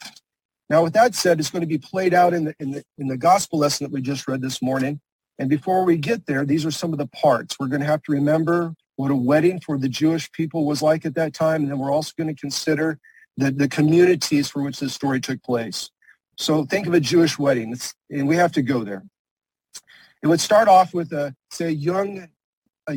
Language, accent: English, American